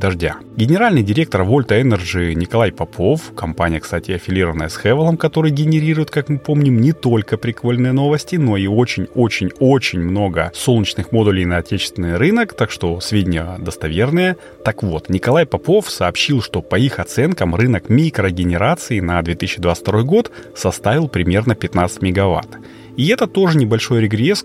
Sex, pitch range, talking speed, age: male, 90-140 Hz, 140 wpm, 30-49